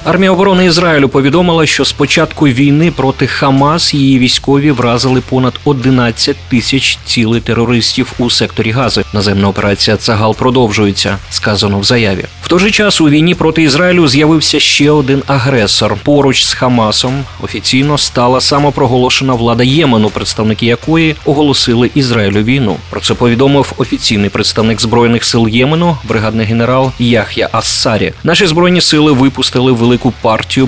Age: 30-49